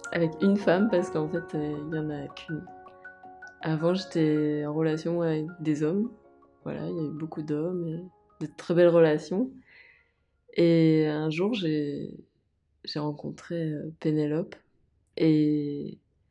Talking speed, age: 145 wpm, 20-39